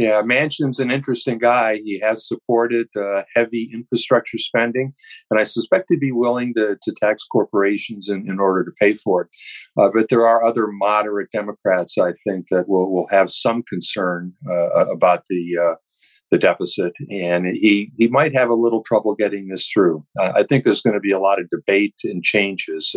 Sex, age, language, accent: male, 50-69, English, American